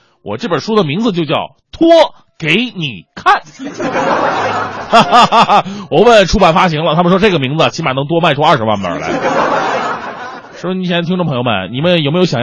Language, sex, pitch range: Chinese, male, 145-215 Hz